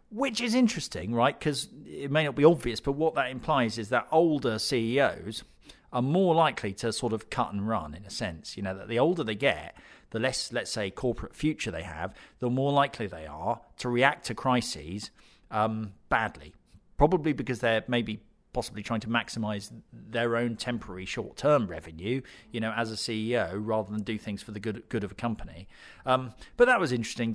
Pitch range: 105-130 Hz